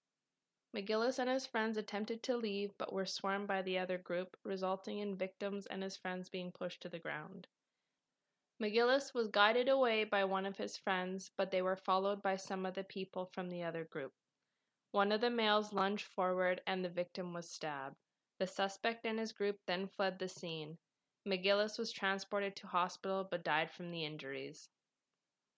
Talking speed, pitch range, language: 180 wpm, 180-205 Hz, English